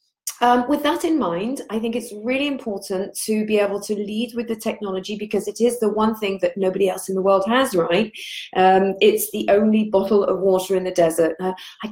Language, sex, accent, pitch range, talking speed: English, female, British, 190-250 Hz, 220 wpm